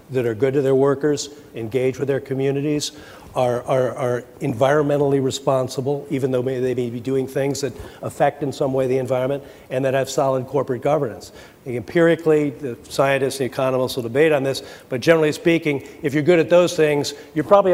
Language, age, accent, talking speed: English, 50-69, American, 185 wpm